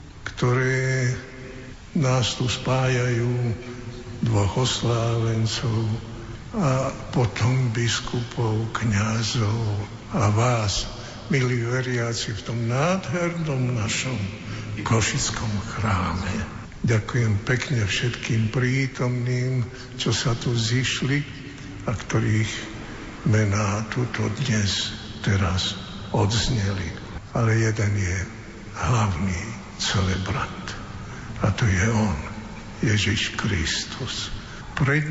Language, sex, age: Slovak, male, 60-79